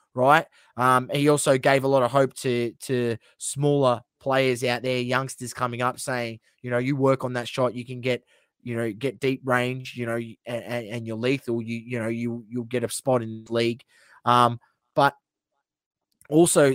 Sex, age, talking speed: male, 20-39, 195 wpm